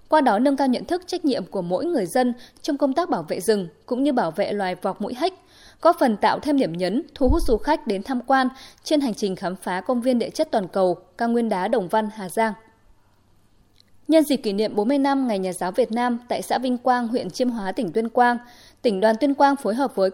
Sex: female